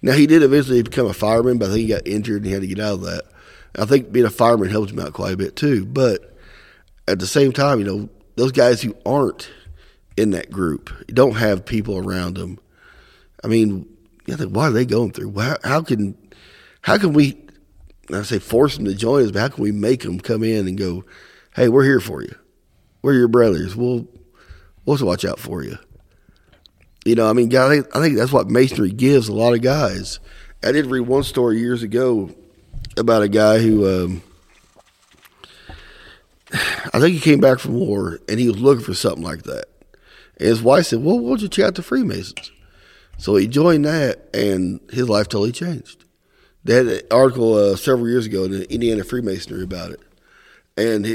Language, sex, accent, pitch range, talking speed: English, male, American, 100-130 Hz, 205 wpm